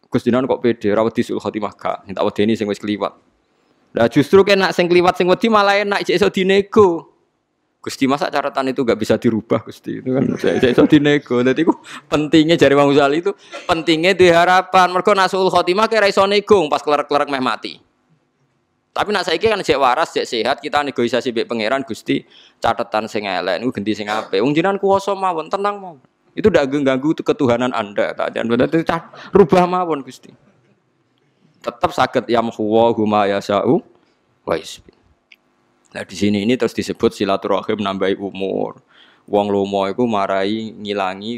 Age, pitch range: 20-39, 105-170 Hz